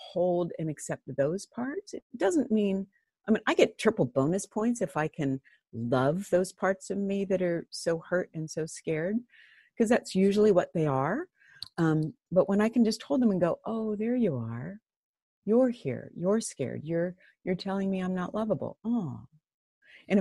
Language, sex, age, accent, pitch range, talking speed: English, female, 50-69, American, 170-230 Hz, 185 wpm